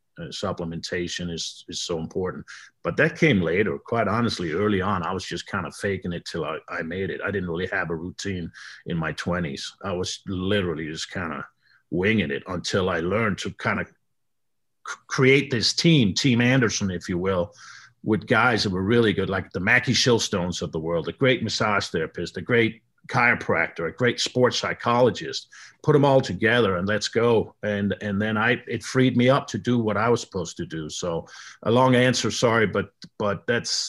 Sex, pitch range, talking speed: male, 100-135 Hz, 195 wpm